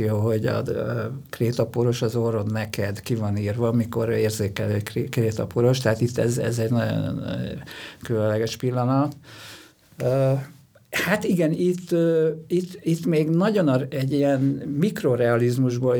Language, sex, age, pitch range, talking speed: Hungarian, male, 50-69, 115-135 Hz, 125 wpm